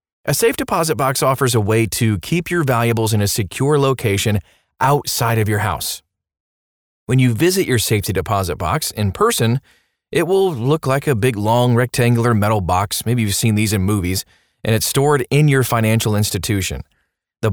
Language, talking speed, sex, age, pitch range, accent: English, 180 wpm, male, 30-49, 100-140 Hz, American